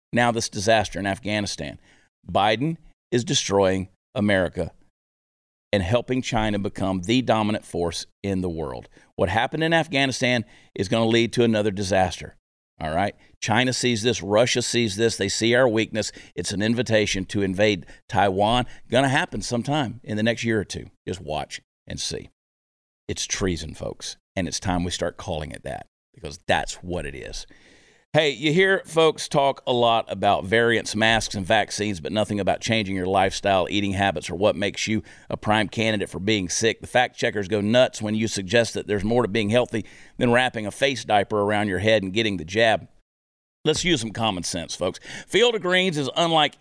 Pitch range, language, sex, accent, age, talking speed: 100-125 Hz, English, male, American, 50-69, 185 wpm